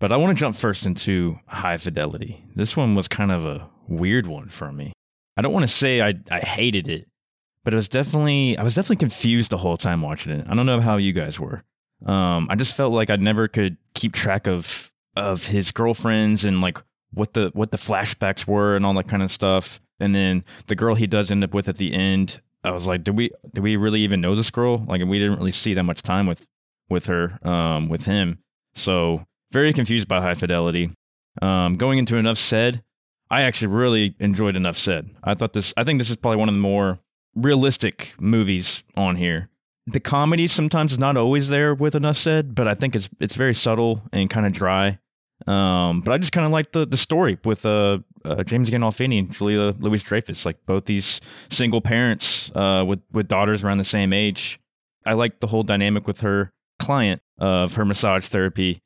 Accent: American